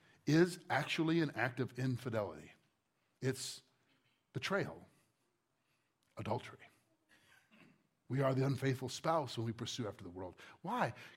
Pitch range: 120-165 Hz